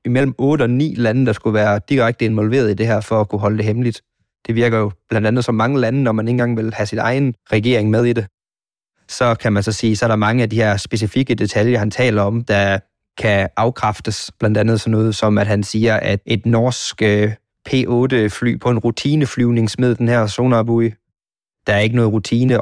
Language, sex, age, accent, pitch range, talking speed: Danish, male, 20-39, native, 105-120 Hz, 220 wpm